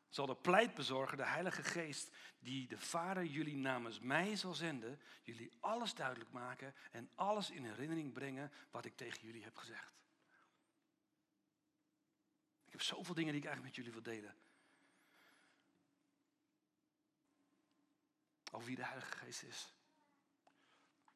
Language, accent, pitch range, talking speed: Dutch, Dutch, 145-210 Hz, 130 wpm